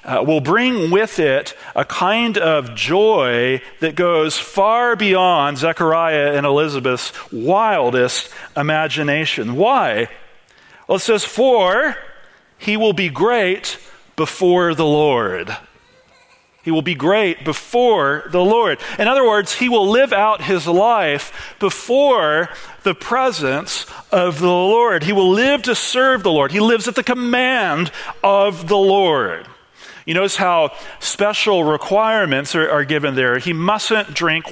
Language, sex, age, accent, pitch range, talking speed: English, male, 40-59, American, 155-215 Hz, 135 wpm